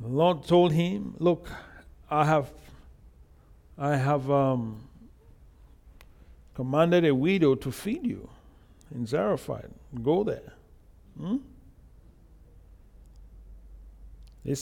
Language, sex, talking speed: English, male, 90 wpm